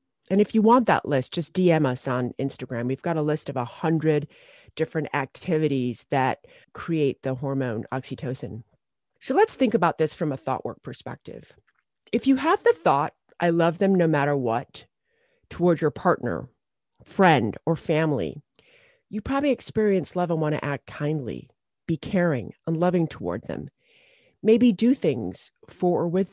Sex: female